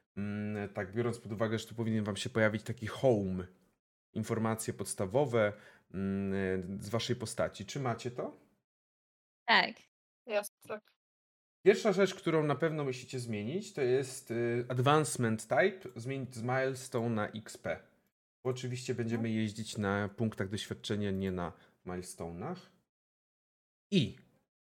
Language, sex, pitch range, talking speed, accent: Polish, male, 105-140 Hz, 115 wpm, native